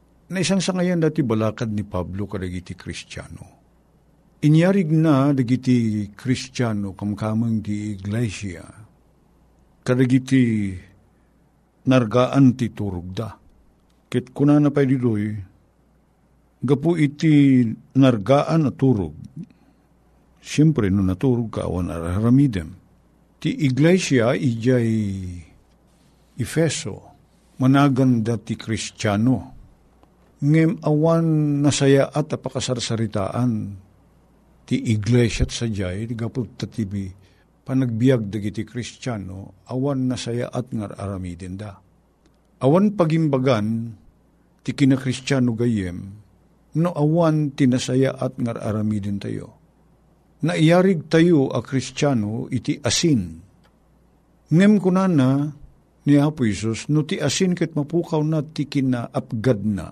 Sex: male